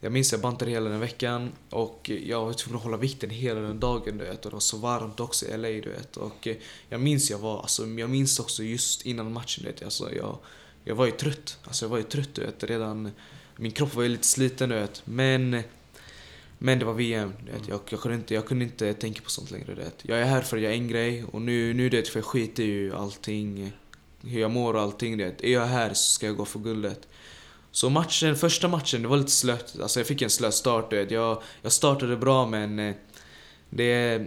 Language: Swedish